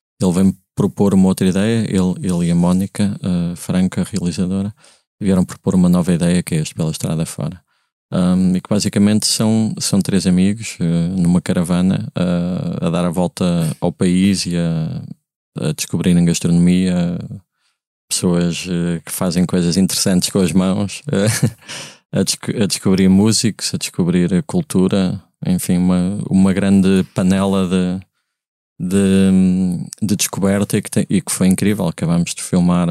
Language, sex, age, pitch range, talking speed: Portuguese, male, 20-39, 90-110 Hz, 140 wpm